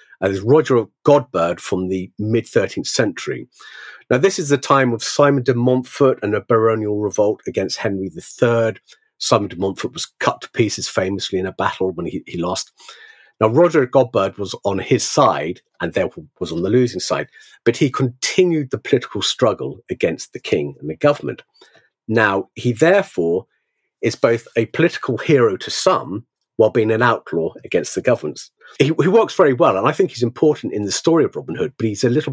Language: English